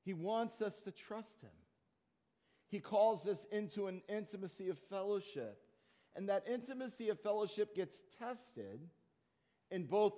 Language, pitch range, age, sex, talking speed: English, 180-220 Hz, 50-69, male, 135 wpm